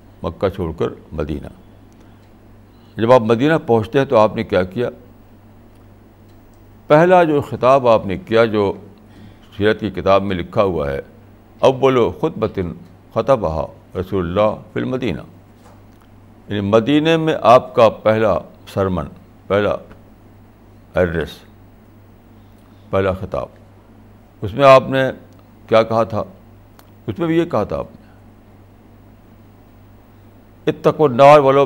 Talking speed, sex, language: 120 wpm, male, Urdu